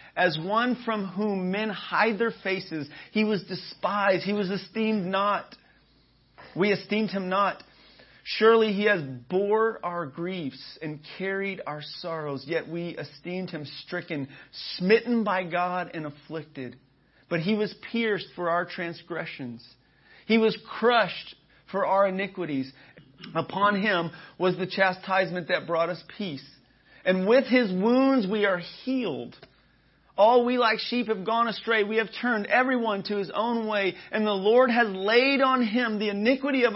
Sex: male